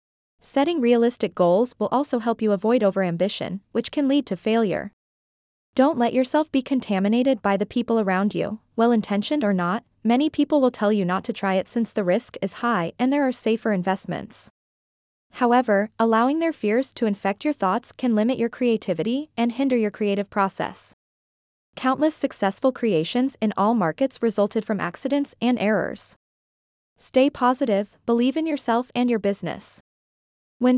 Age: 20-39